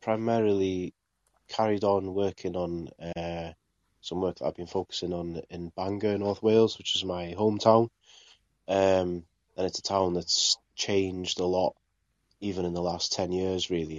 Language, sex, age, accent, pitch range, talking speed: English, male, 20-39, British, 80-100 Hz, 160 wpm